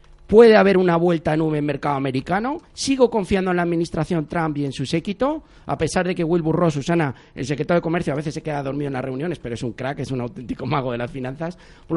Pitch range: 145-205 Hz